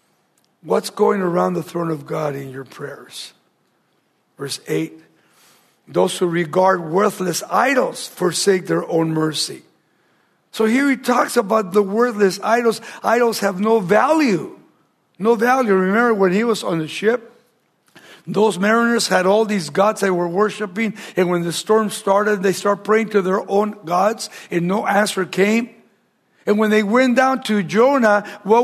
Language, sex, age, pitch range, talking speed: English, male, 60-79, 180-230 Hz, 155 wpm